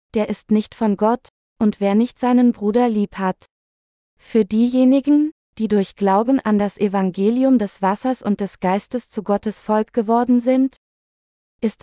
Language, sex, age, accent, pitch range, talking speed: German, female, 20-39, German, 200-245 Hz, 155 wpm